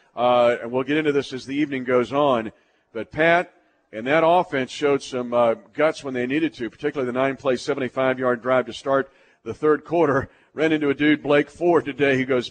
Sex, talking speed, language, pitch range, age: male, 205 wpm, English, 130-165 Hz, 40-59